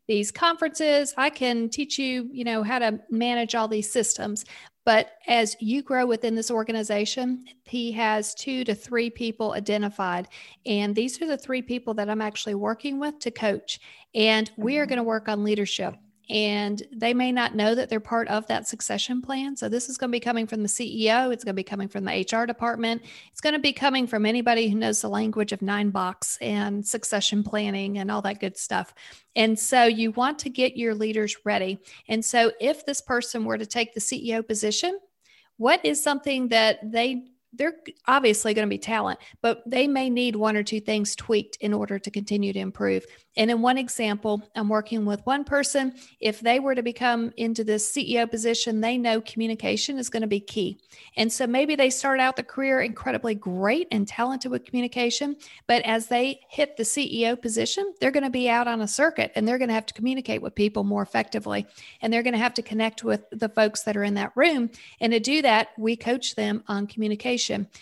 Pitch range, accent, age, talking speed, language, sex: 215-250 Hz, American, 40-59, 210 wpm, English, female